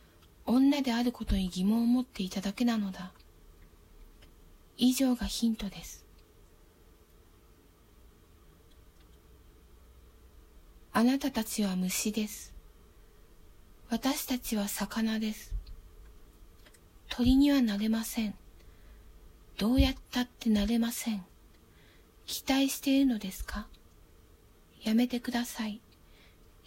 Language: Japanese